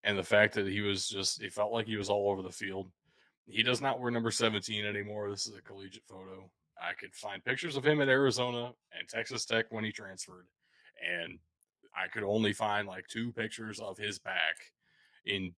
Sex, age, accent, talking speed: male, 20-39, American, 210 wpm